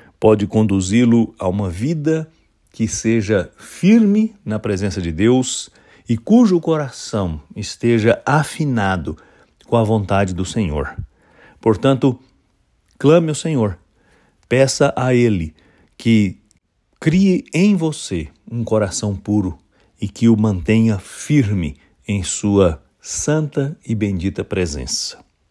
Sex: male